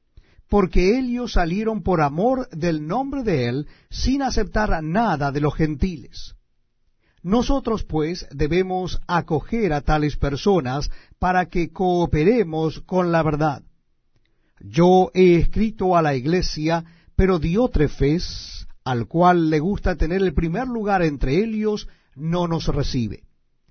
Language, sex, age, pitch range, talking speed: Spanish, male, 50-69, 150-205 Hz, 125 wpm